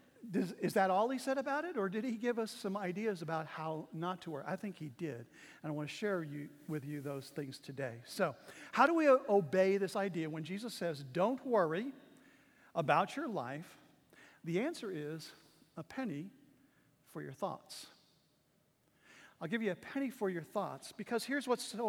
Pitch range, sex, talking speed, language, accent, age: 170-260 Hz, male, 190 wpm, English, American, 50-69